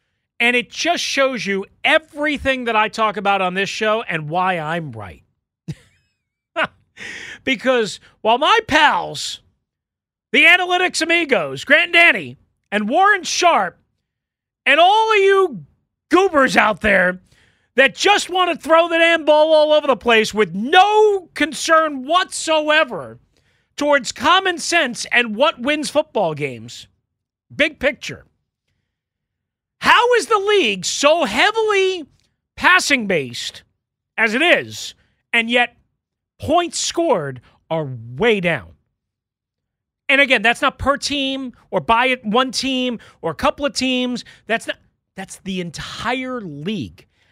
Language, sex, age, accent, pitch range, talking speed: English, male, 40-59, American, 205-315 Hz, 125 wpm